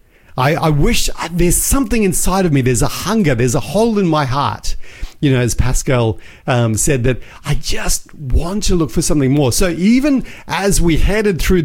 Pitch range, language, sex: 130-175 Hz, English, male